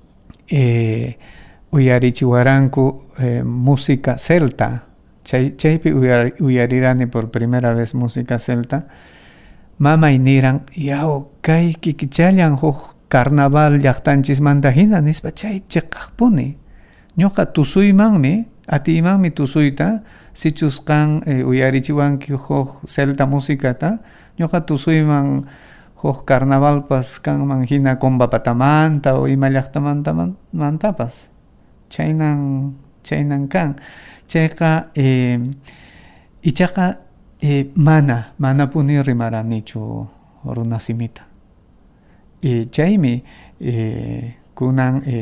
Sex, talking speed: male, 90 wpm